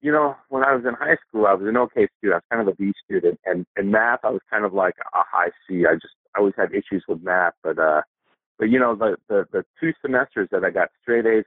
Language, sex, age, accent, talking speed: English, male, 40-59, American, 285 wpm